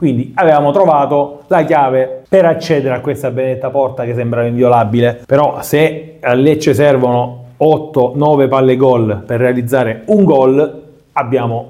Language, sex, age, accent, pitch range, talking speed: Italian, male, 30-49, native, 110-145 Hz, 140 wpm